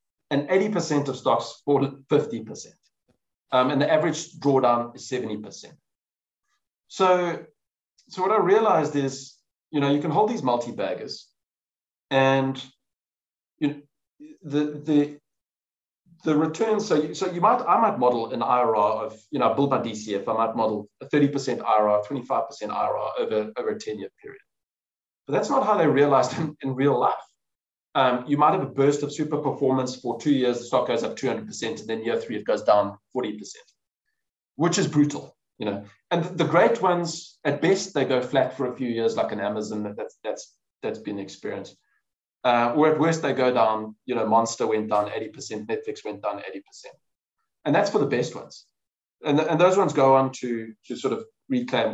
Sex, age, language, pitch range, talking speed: male, 30-49, English, 115-160 Hz, 180 wpm